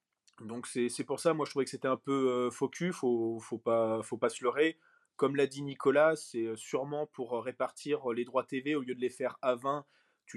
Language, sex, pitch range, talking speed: French, male, 115-145 Hz, 225 wpm